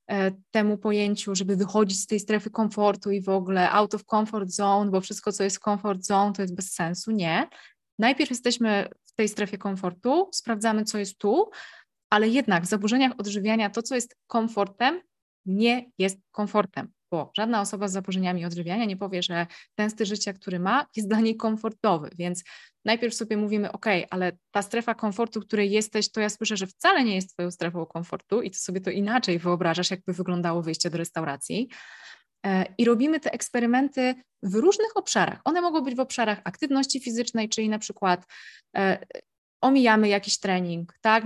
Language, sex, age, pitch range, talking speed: Polish, female, 20-39, 200-235 Hz, 175 wpm